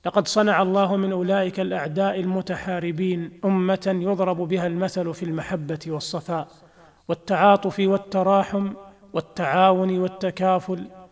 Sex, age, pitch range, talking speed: male, 40-59, 175-190 Hz, 95 wpm